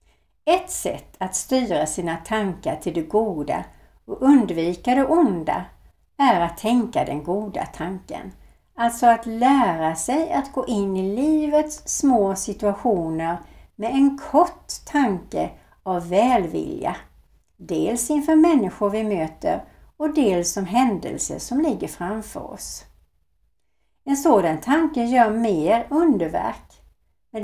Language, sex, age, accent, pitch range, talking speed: Swedish, female, 60-79, native, 170-265 Hz, 120 wpm